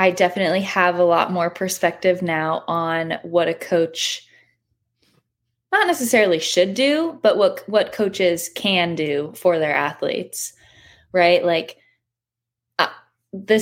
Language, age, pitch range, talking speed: English, 20-39, 170-215 Hz, 130 wpm